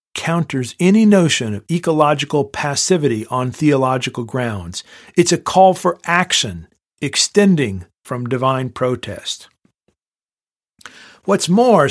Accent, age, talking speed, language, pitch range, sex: American, 50-69, 100 wpm, English, 125-180 Hz, male